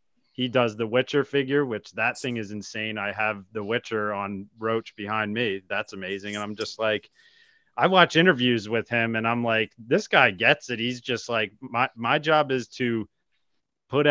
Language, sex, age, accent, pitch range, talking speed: English, male, 30-49, American, 105-130 Hz, 190 wpm